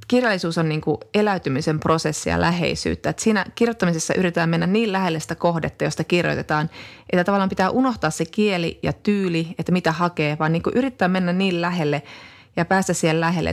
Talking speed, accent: 175 wpm, native